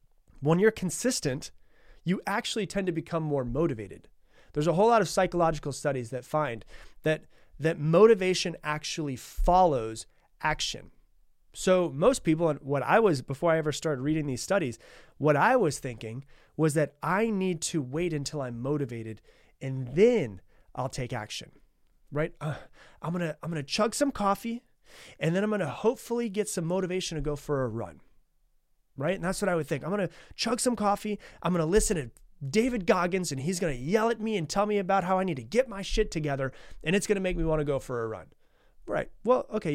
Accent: American